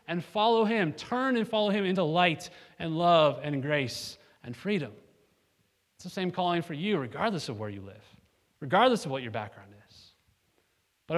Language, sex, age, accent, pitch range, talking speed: English, male, 20-39, American, 135-200 Hz, 175 wpm